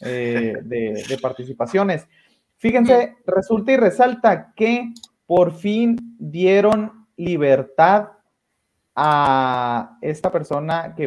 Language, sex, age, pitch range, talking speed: Spanish, male, 30-49, 140-200 Hz, 90 wpm